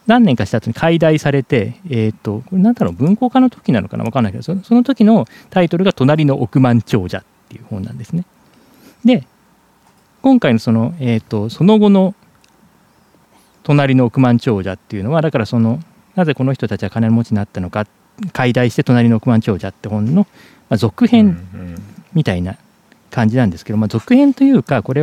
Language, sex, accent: Japanese, male, native